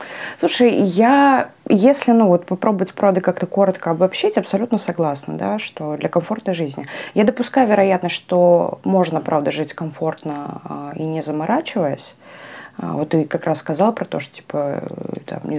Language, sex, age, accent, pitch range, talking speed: Russian, female, 20-39, native, 150-200 Hz, 150 wpm